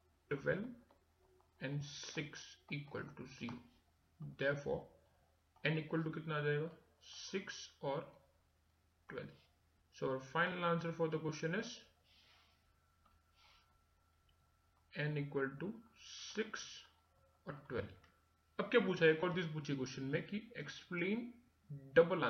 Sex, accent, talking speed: male, native, 50 wpm